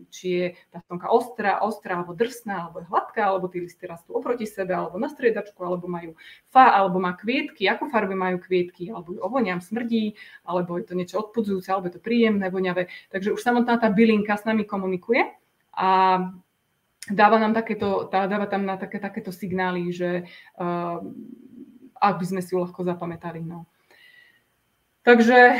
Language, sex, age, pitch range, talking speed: Czech, female, 20-39, 185-225 Hz, 175 wpm